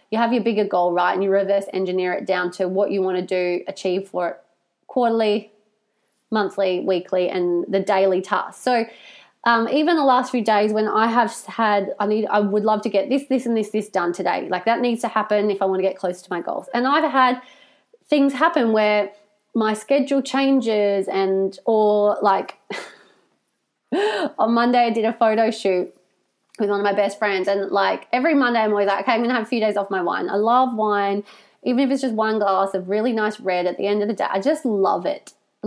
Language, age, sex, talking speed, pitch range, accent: English, 20-39, female, 220 wpm, 195-245 Hz, Australian